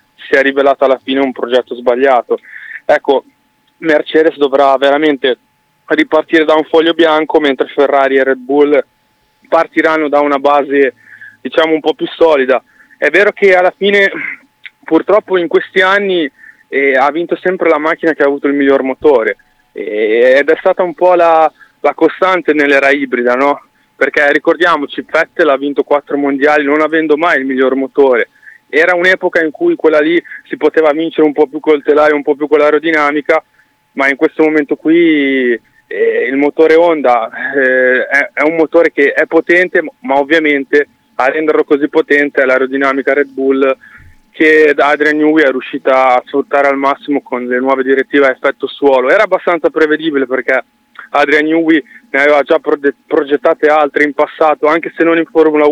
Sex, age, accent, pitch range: male, 20-39, native, 140-165 Hz